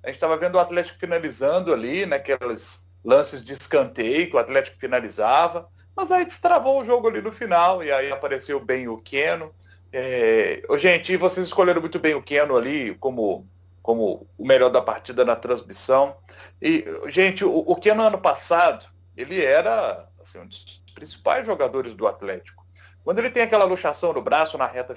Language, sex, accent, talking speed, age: Portuguese, male, Brazilian, 170 wpm, 40-59